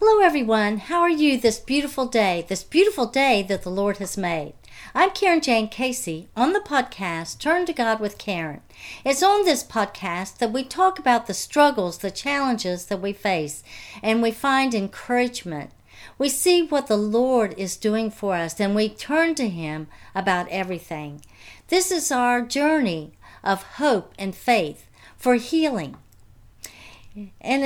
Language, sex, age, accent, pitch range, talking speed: English, female, 60-79, American, 190-275 Hz, 160 wpm